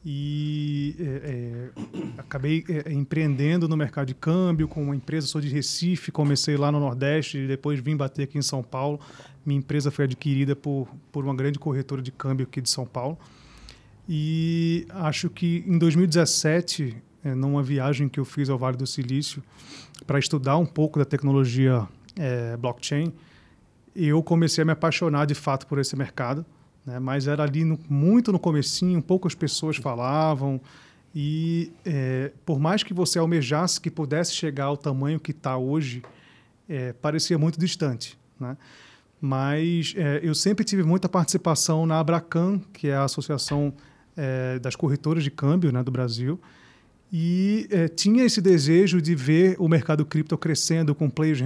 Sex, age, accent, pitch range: male, 30-49, Brazilian, 140-165 Hz